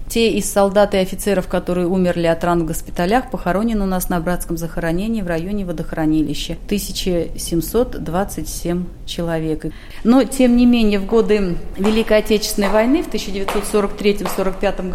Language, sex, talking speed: Russian, female, 135 wpm